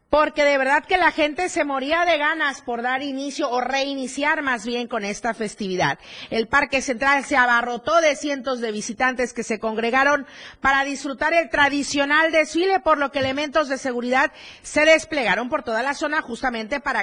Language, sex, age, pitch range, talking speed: Spanish, female, 40-59, 220-285 Hz, 180 wpm